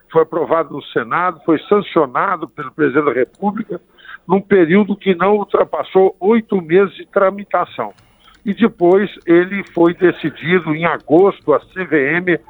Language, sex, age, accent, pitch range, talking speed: Portuguese, male, 60-79, Brazilian, 160-205 Hz, 135 wpm